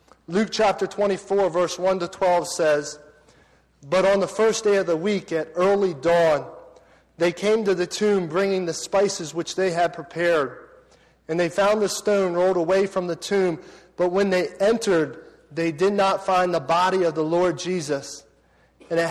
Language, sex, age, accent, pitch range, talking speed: English, male, 40-59, American, 160-195 Hz, 180 wpm